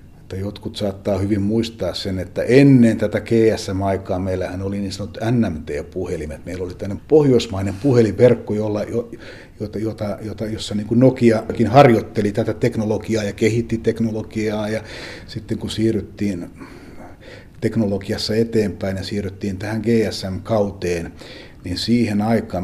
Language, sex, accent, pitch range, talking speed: Finnish, male, native, 95-110 Hz, 115 wpm